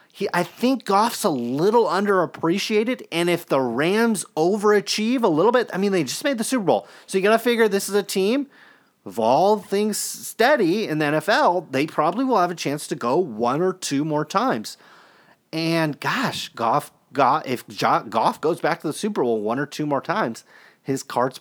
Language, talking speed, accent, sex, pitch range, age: English, 200 wpm, American, male, 130-195 Hz, 30-49